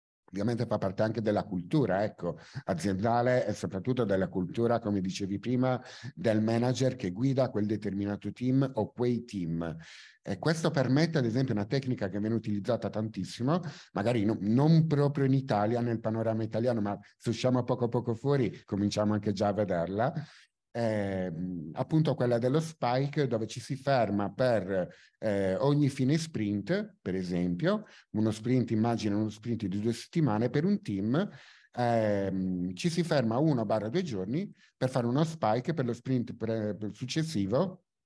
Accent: native